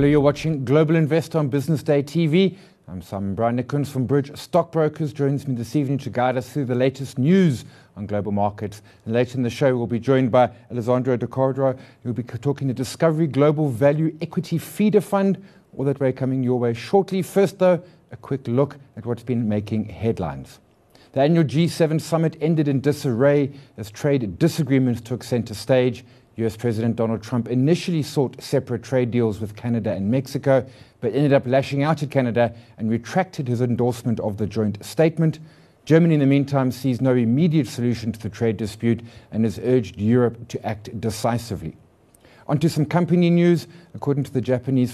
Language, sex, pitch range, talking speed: English, male, 115-150 Hz, 185 wpm